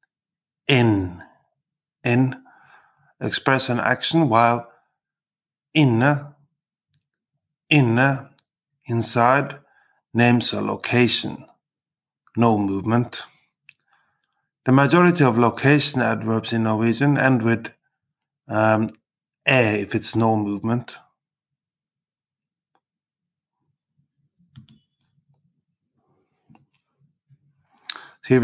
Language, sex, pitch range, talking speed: English, male, 115-145 Hz, 65 wpm